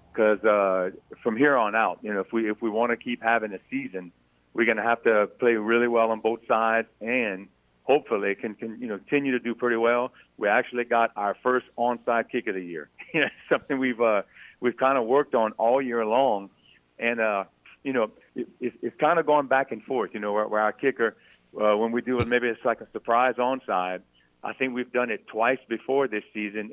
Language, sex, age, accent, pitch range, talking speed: English, male, 50-69, American, 105-125 Hz, 225 wpm